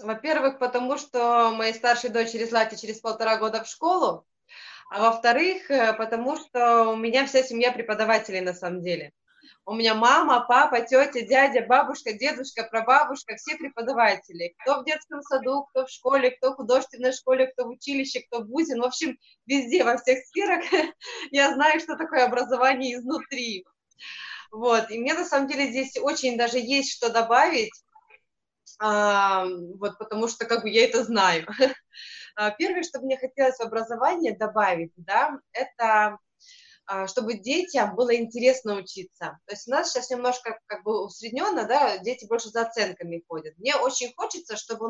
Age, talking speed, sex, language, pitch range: 20-39, 160 wpm, female, Russian, 220-270 Hz